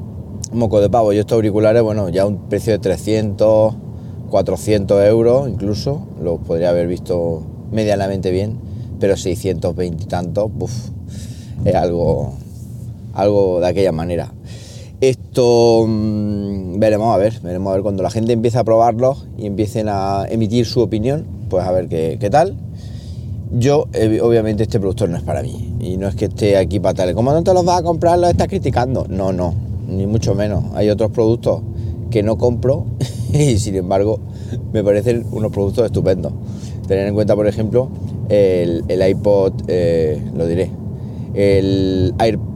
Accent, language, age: Spanish, Spanish, 30-49